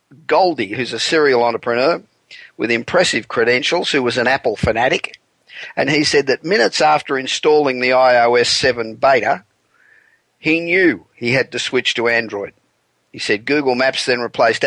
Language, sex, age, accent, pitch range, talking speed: English, male, 50-69, Australian, 120-160 Hz, 155 wpm